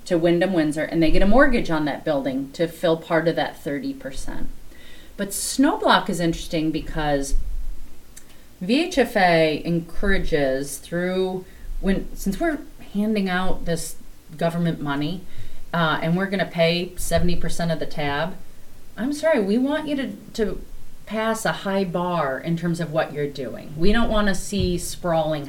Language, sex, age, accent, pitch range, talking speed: English, female, 30-49, American, 155-200 Hz, 155 wpm